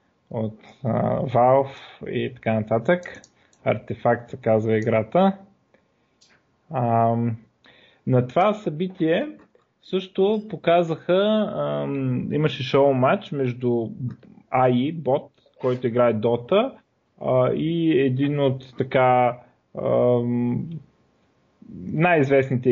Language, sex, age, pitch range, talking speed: Bulgarian, male, 20-39, 120-155 Hz, 80 wpm